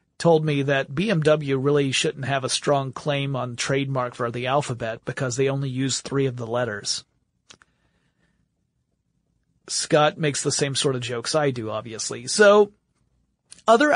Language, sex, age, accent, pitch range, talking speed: English, male, 30-49, American, 135-175 Hz, 150 wpm